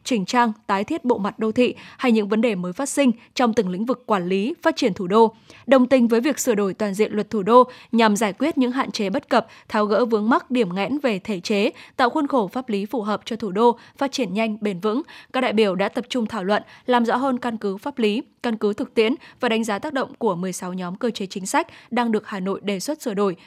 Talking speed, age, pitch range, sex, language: 275 wpm, 10-29, 210-250 Hz, female, Vietnamese